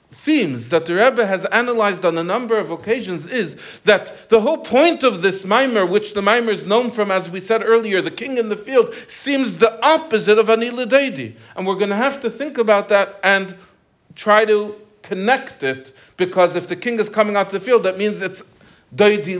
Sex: male